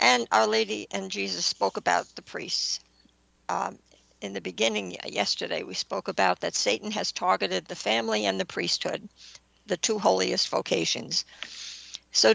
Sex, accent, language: female, American, English